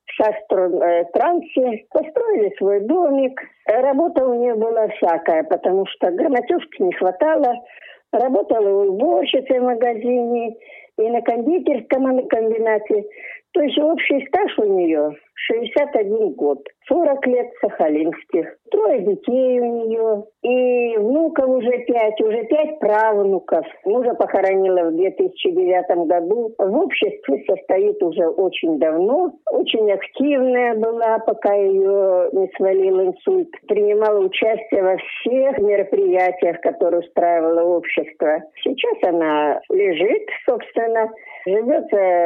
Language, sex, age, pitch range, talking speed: Russian, female, 50-69, 195-315 Hz, 110 wpm